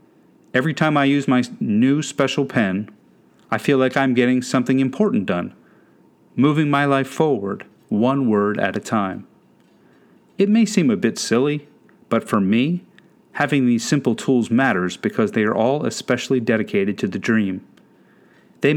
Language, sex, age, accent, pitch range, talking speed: English, male, 40-59, American, 110-150 Hz, 155 wpm